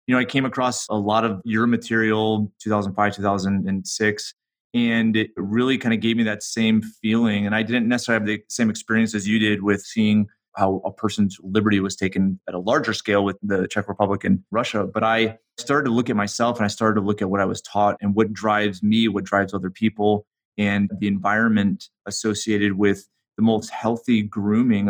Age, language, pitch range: 30-49, English, 100-115 Hz